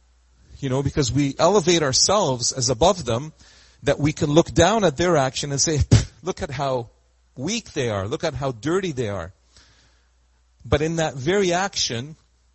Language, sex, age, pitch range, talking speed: English, male, 40-59, 100-150 Hz, 170 wpm